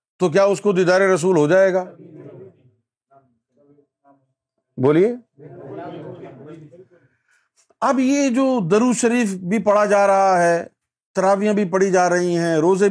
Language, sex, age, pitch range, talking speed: Urdu, male, 50-69, 135-195 Hz, 125 wpm